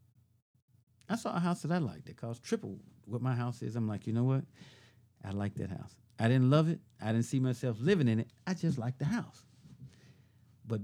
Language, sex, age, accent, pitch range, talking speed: English, male, 50-69, American, 115-140 Hz, 220 wpm